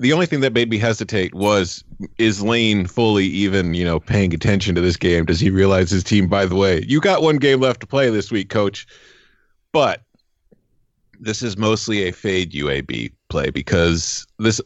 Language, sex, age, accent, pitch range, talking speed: English, male, 30-49, American, 85-110 Hz, 190 wpm